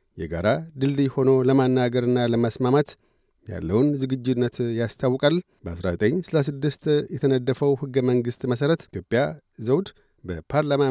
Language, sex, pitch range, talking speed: Amharic, male, 130-155 Hz, 90 wpm